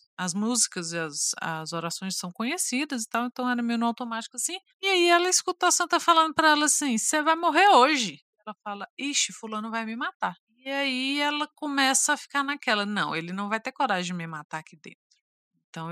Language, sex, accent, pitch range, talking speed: Portuguese, female, Brazilian, 190-270 Hz, 210 wpm